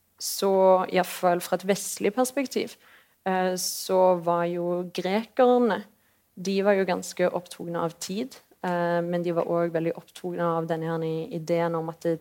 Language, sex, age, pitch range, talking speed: English, female, 30-49, 170-195 Hz, 145 wpm